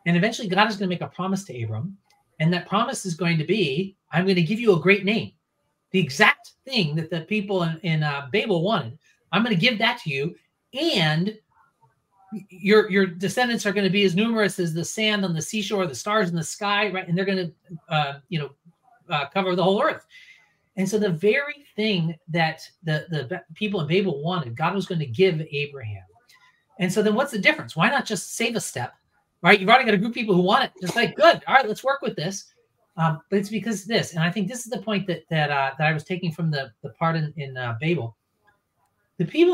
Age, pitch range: 30-49, 155-205 Hz